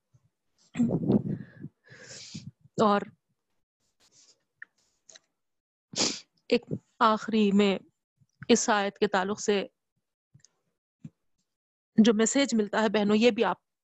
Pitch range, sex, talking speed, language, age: 210-245 Hz, female, 75 wpm, Urdu, 30-49